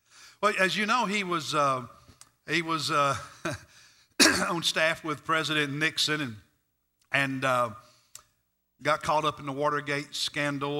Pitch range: 125-165 Hz